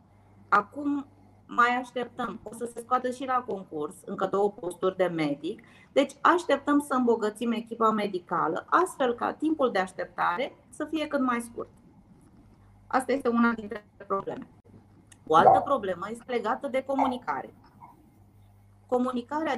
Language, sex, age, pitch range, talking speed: Romanian, female, 30-49, 195-270 Hz, 135 wpm